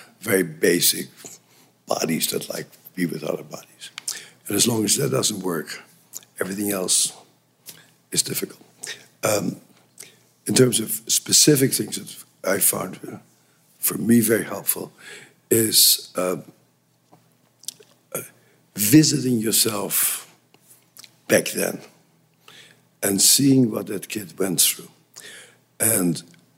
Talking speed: 110 wpm